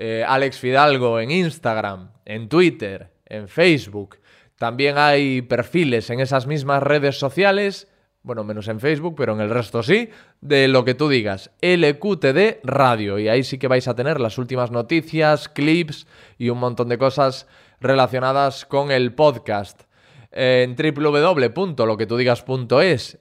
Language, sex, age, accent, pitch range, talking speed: Spanish, male, 20-39, Spanish, 115-150 Hz, 140 wpm